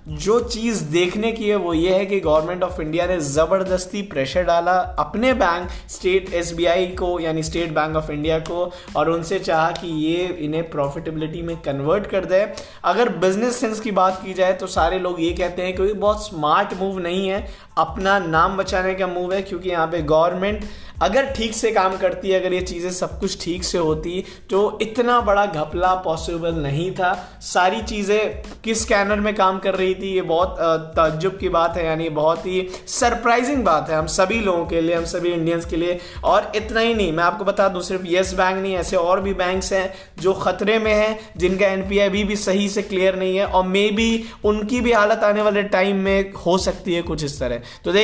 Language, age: Hindi, 20-39